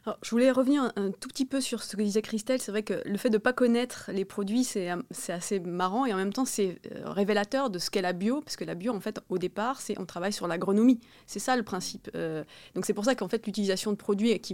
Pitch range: 180-235 Hz